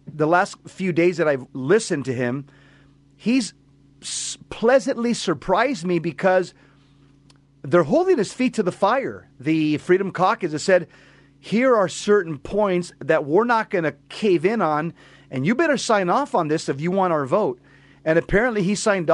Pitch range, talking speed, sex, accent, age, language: 150-195 Hz, 170 wpm, male, American, 40-59, English